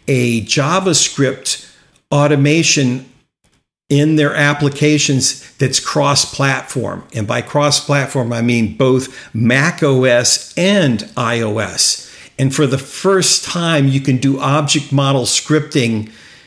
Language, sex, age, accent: English, male, 50-69, American